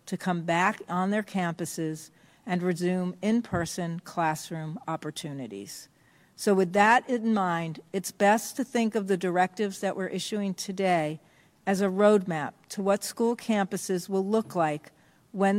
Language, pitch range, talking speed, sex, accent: English, 165-205 Hz, 145 wpm, female, American